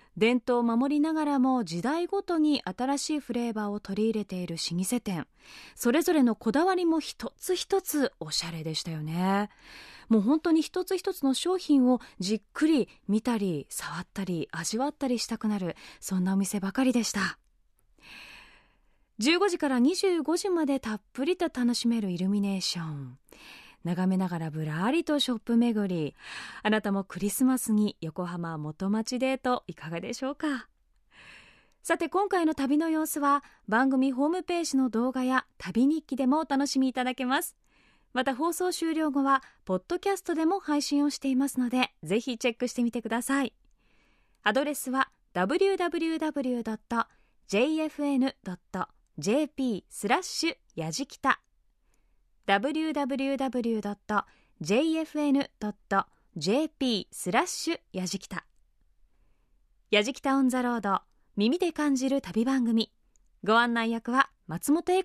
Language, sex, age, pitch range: Japanese, female, 20-39, 205-300 Hz